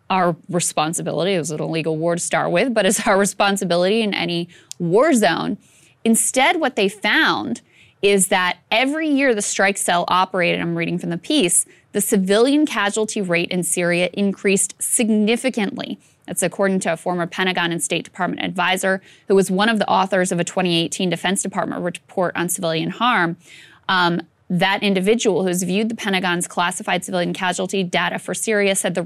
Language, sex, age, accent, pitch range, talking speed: English, female, 20-39, American, 175-215 Hz, 170 wpm